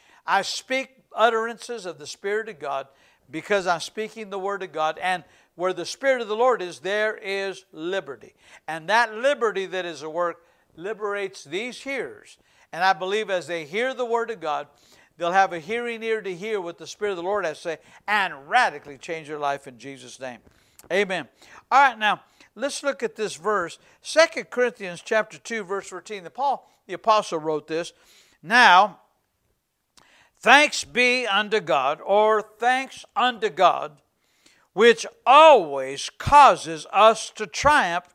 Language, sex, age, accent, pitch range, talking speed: English, male, 60-79, American, 170-230 Hz, 165 wpm